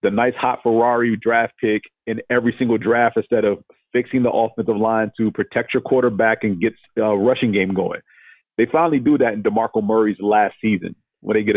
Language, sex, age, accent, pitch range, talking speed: English, male, 40-59, American, 110-125 Hz, 195 wpm